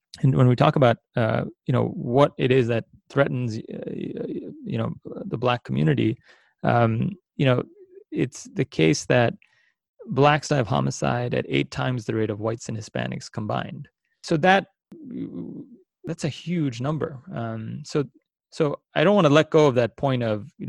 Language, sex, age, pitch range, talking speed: English, male, 30-49, 110-150 Hz, 175 wpm